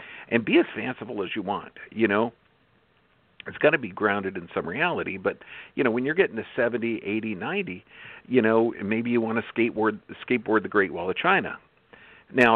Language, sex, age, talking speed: English, male, 50-69, 195 wpm